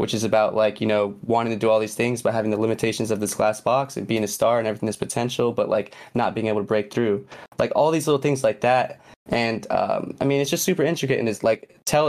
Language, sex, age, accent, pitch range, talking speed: English, male, 20-39, American, 110-130 Hz, 280 wpm